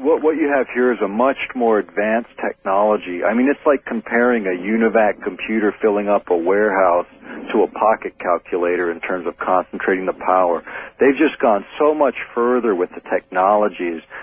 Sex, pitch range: male, 95-125 Hz